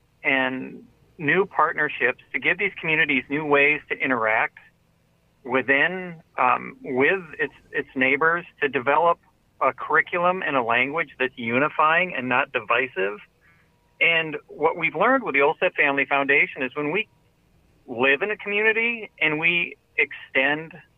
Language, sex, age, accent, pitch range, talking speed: English, male, 40-59, American, 130-170 Hz, 135 wpm